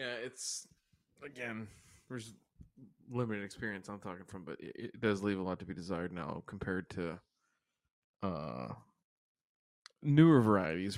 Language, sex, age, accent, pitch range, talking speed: English, male, 20-39, American, 95-110 Hz, 130 wpm